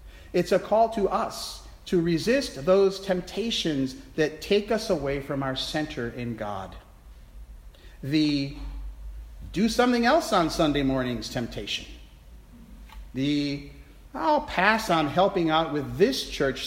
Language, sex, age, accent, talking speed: English, male, 50-69, American, 125 wpm